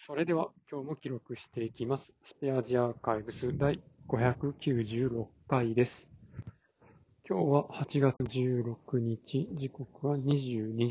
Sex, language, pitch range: male, Japanese, 115-145 Hz